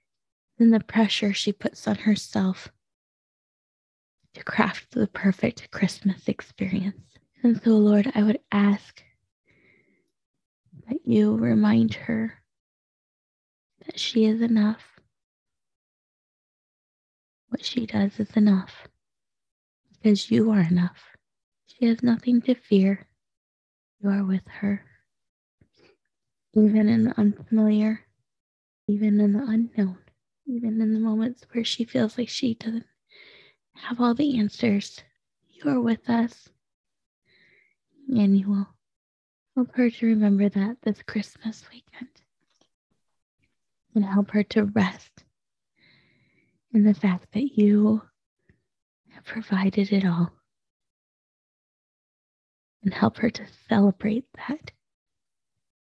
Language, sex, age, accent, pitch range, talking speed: English, female, 20-39, American, 200-230 Hz, 110 wpm